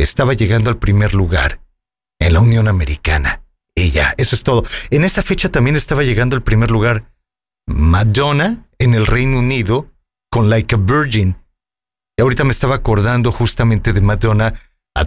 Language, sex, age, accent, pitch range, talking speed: English, male, 40-59, Mexican, 95-125 Hz, 160 wpm